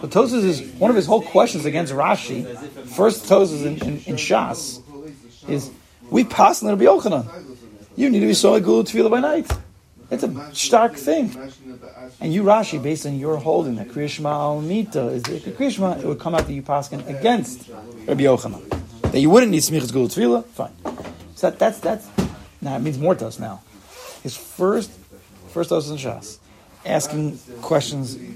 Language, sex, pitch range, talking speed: English, male, 115-150 Hz, 175 wpm